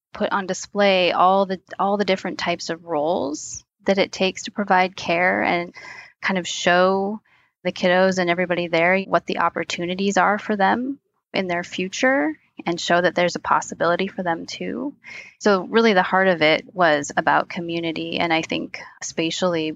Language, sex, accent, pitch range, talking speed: English, female, American, 170-190 Hz, 175 wpm